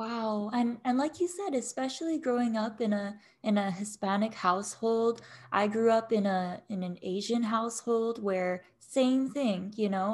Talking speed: 170 wpm